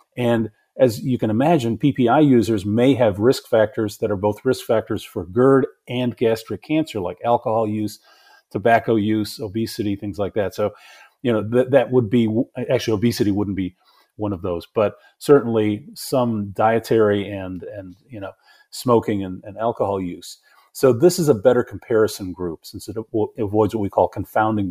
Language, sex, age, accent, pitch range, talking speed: English, male, 40-59, American, 105-125 Hz, 170 wpm